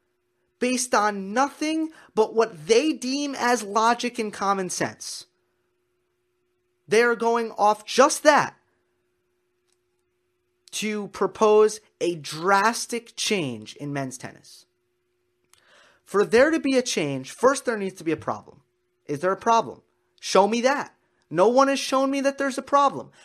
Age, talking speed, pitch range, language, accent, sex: 30-49, 140 wpm, 160-265 Hz, English, American, male